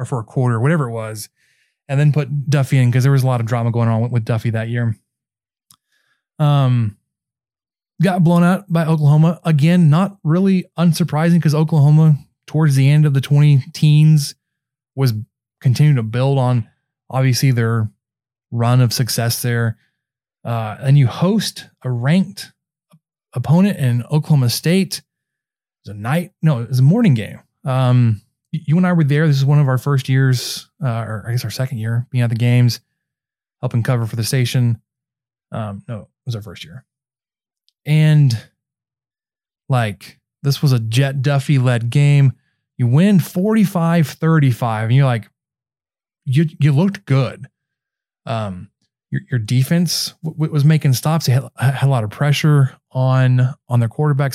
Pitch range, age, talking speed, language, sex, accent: 120-155 Hz, 20-39, 165 wpm, English, male, American